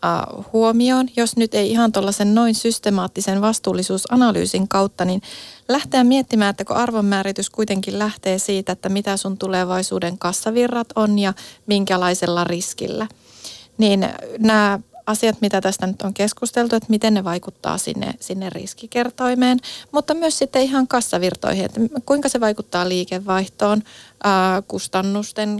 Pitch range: 190-230 Hz